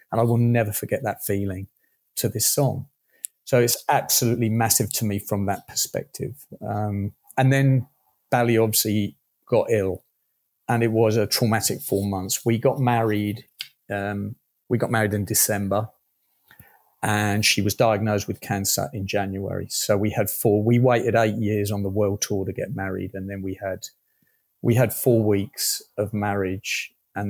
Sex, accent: male, British